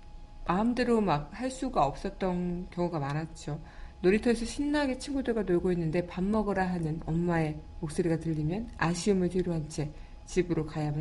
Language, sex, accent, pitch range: Korean, female, native, 155-195 Hz